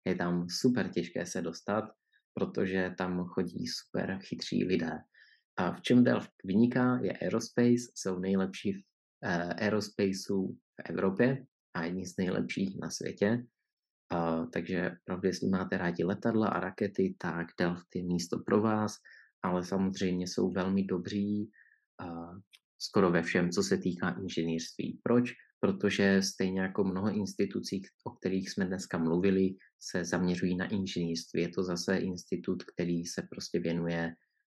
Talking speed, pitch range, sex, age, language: 140 wpm, 90-105 Hz, male, 20-39, Czech